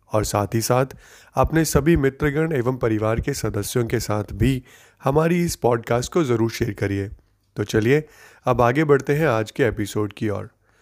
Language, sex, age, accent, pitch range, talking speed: Hindi, male, 30-49, native, 110-150 Hz, 175 wpm